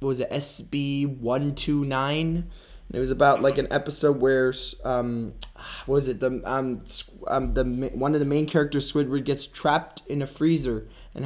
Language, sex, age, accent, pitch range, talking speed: English, male, 20-39, American, 130-165 Hz, 180 wpm